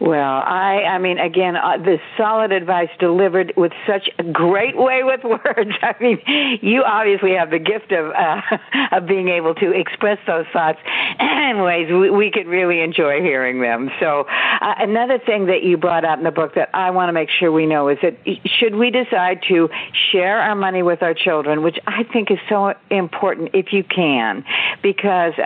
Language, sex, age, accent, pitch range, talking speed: English, female, 60-79, American, 160-195 Hz, 195 wpm